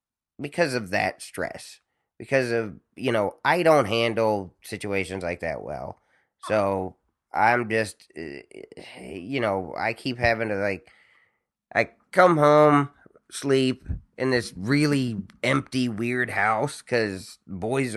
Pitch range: 95-120 Hz